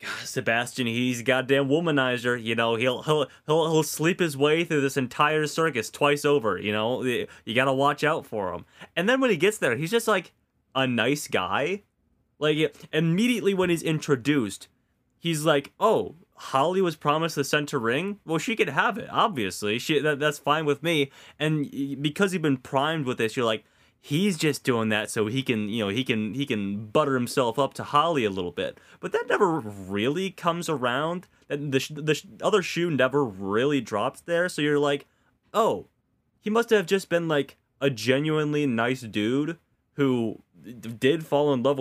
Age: 20-39